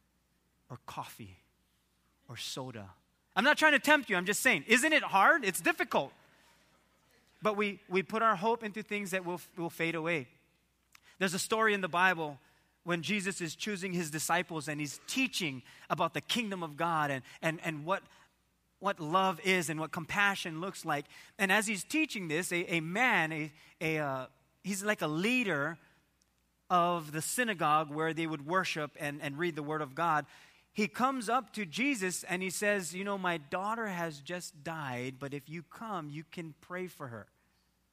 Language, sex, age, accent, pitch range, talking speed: English, male, 30-49, American, 135-200 Hz, 185 wpm